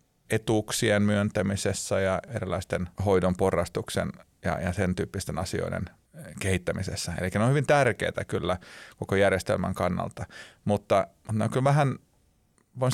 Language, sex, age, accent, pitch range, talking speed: Finnish, male, 30-49, native, 95-110 Hz, 120 wpm